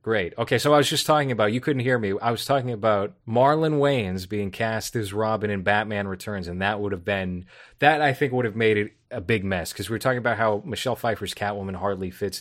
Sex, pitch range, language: male, 100-120 Hz, English